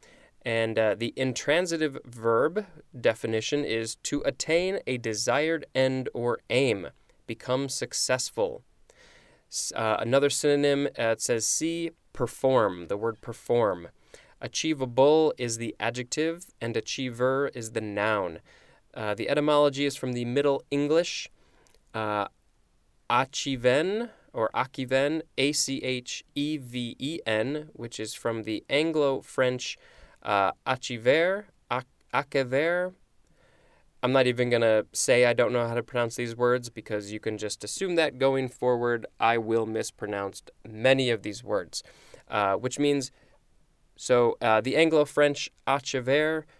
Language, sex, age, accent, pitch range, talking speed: English, male, 20-39, American, 115-145 Hz, 120 wpm